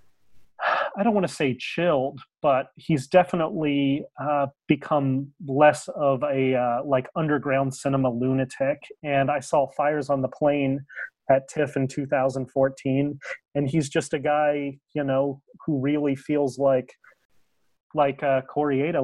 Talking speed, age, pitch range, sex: 140 wpm, 30-49, 130-150 Hz, male